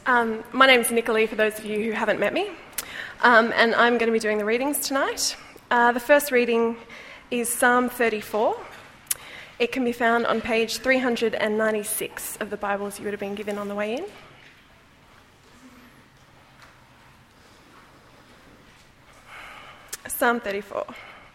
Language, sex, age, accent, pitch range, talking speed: English, female, 20-39, Australian, 210-250 Hz, 145 wpm